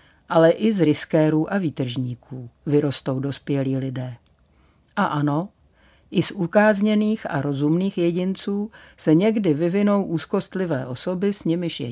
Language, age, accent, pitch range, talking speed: Czech, 50-69, native, 135-175 Hz, 125 wpm